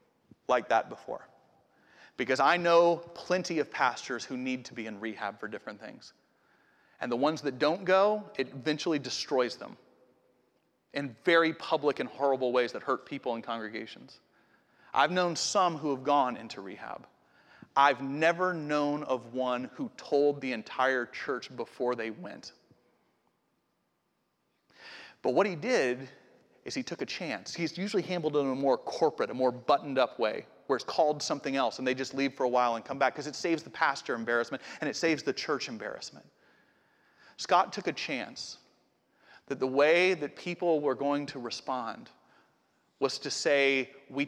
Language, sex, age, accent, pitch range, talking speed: English, male, 30-49, American, 125-160 Hz, 170 wpm